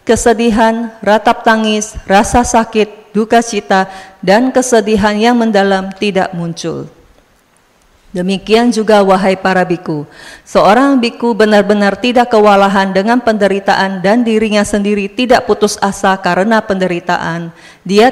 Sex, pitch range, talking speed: female, 190-220 Hz, 115 wpm